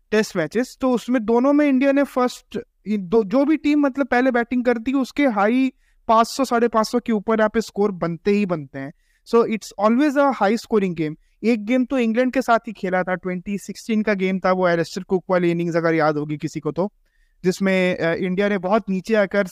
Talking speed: 205 wpm